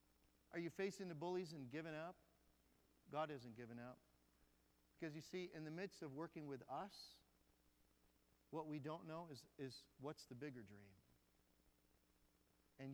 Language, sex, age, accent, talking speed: English, male, 50-69, American, 155 wpm